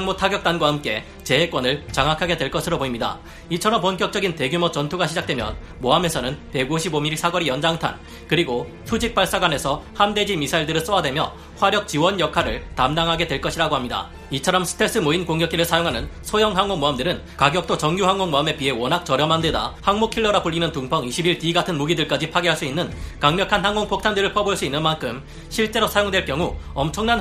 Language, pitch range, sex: Korean, 150-195 Hz, male